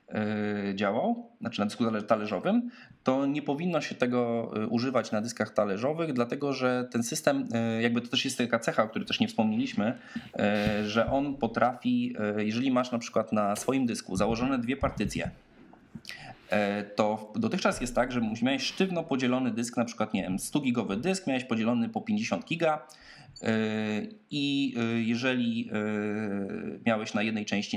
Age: 20-39